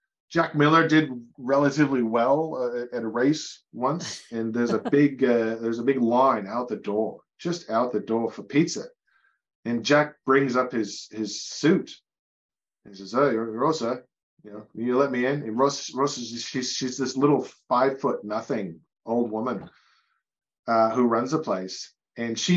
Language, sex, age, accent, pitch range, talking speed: English, male, 40-59, American, 115-150 Hz, 180 wpm